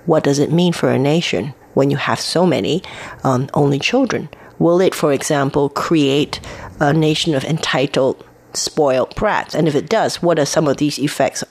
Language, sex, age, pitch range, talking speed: German, female, 30-49, 140-180 Hz, 190 wpm